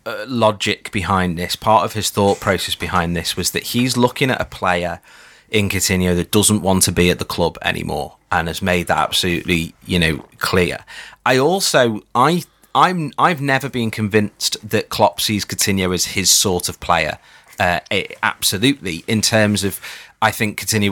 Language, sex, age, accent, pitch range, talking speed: English, male, 30-49, British, 95-115 Hz, 175 wpm